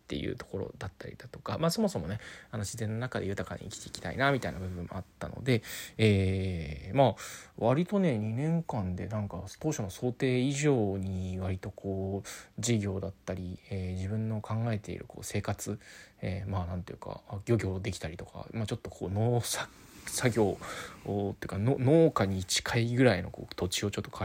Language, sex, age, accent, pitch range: Japanese, male, 20-39, native, 95-120 Hz